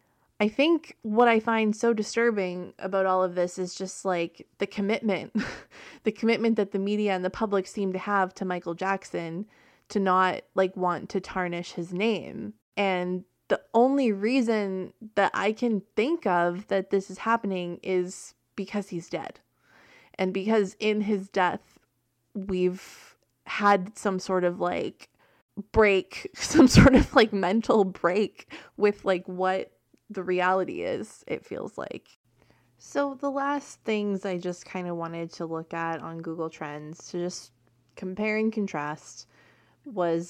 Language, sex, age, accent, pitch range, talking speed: English, female, 20-39, American, 170-205 Hz, 155 wpm